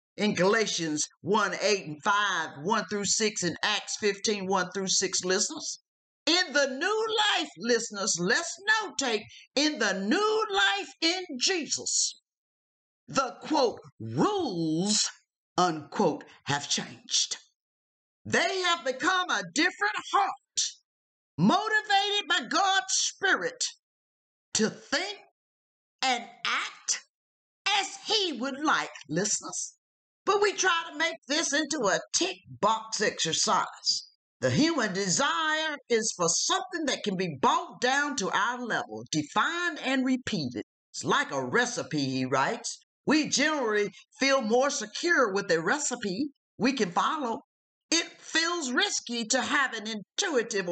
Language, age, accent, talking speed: English, 50-69, American, 125 wpm